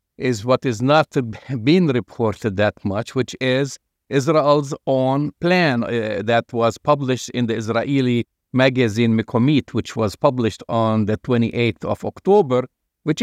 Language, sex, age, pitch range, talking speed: English, male, 50-69, 115-140 Hz, 140 wpm